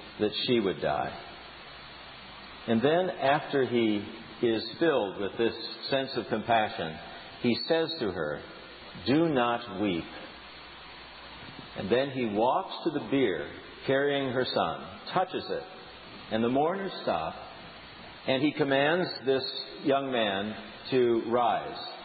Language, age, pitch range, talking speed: English, 50-69, 120-165 Hz, 125 wpm